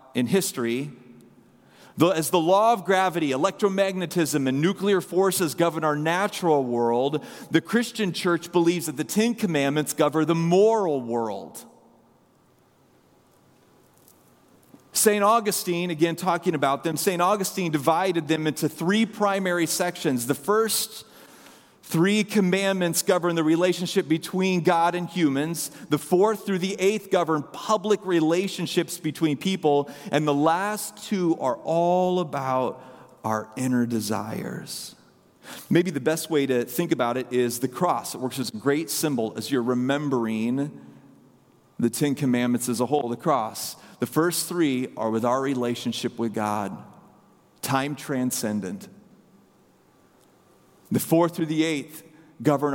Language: English